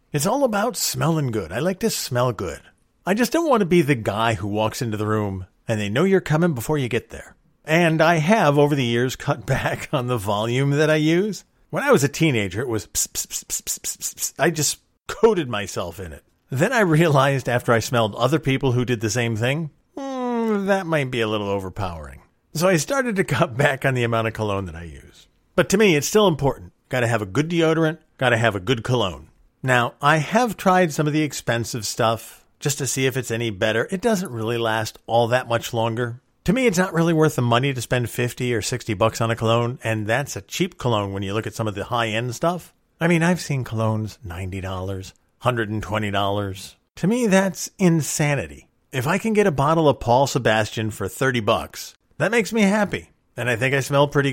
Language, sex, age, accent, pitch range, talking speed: English, male, 40-59, American, 110-165 Hz, 225 wpm